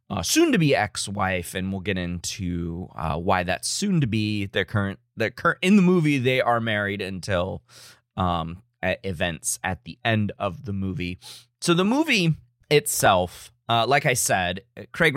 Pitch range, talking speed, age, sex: 95-125 Hz, 145 wpm, 20-39, male